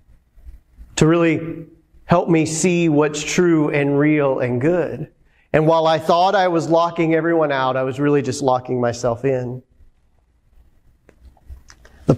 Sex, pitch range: male, 155-215 Hz